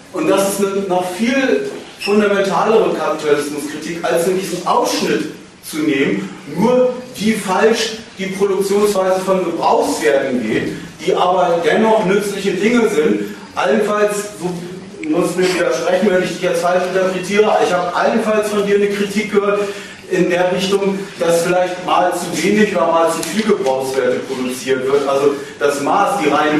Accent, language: German, German